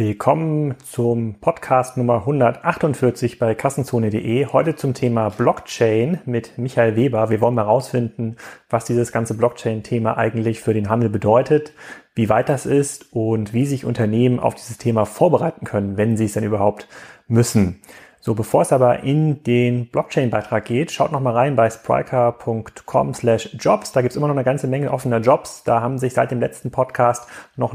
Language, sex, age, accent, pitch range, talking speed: German, male, 30-49, German, 115-130 Hz, 165 wpm